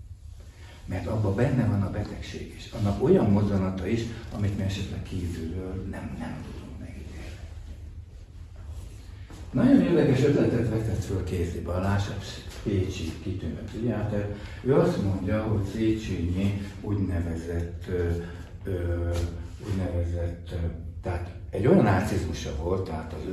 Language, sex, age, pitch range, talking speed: Hungarian, male, 60-79, 85-100 Hz, 105 wpm